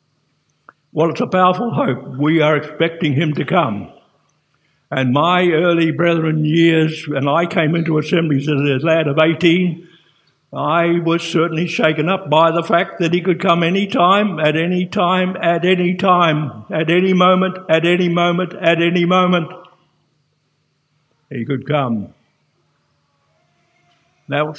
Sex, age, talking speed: male, 60-79, 145 wpm